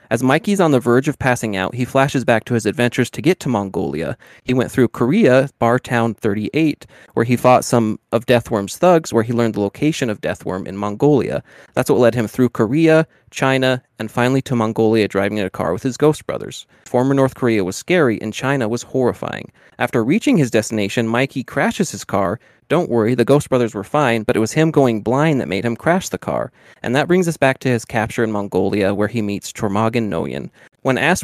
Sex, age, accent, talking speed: male, 30-49, American, 215 wpm